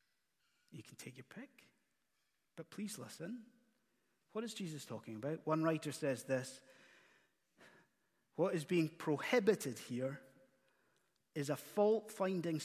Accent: British